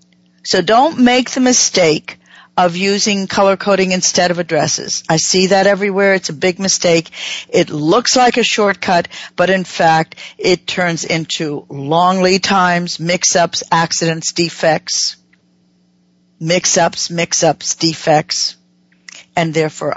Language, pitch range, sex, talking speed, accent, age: English, 155-195 Hz, female, 125 wpm, American, 50-69